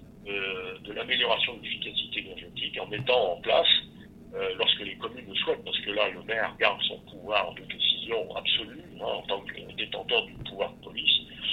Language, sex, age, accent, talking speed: French, male, 60-79, French, 185 wpm